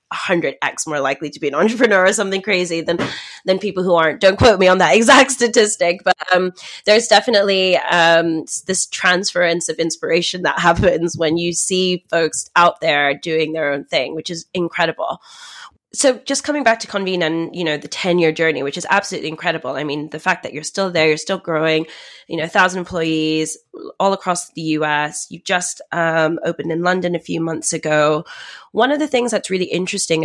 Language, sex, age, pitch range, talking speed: English, female, 20-39, 155-190 Hz, 200 wpm